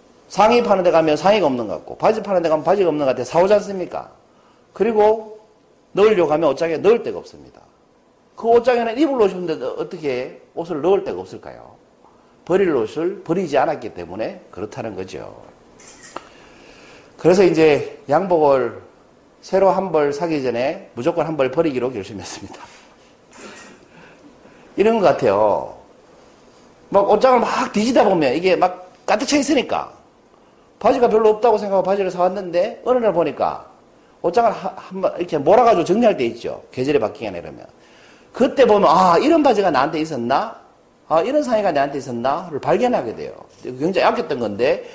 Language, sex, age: Korean, male, 40-59